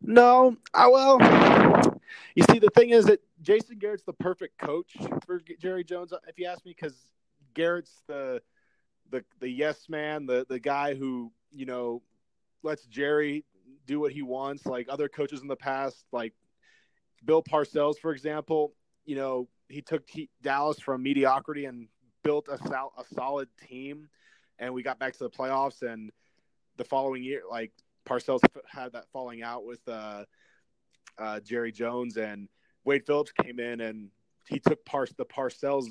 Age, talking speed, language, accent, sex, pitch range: 20-39, 165 wpm, English, American, male, 120-155 Hz